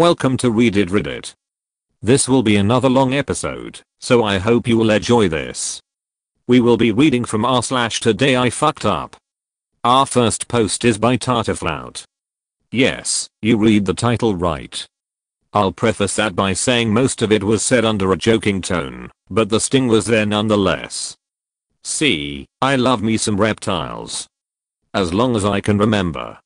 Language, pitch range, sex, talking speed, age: English, 105-125 Hz, male, 160 wpm, 40-59